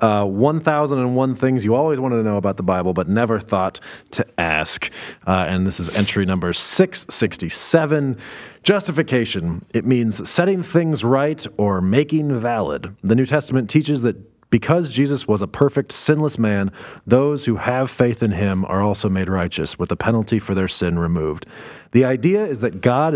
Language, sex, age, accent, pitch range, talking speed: English, male, 30-49, American, 100-135 Hz, 170 wpm